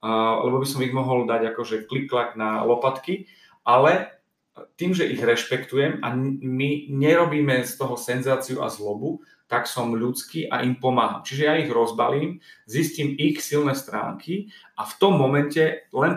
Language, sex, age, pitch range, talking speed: Slovak, male, 40-59, 120-145 Hz, 165 wpm